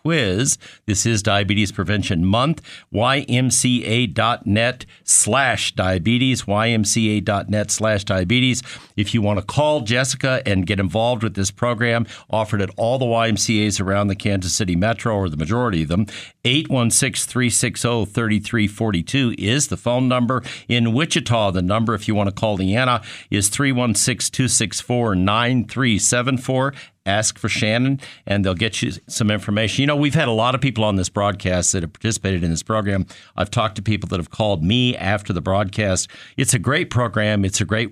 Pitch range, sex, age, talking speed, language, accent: 100-125 Hz, male, 50-69, 155 wpm, English, American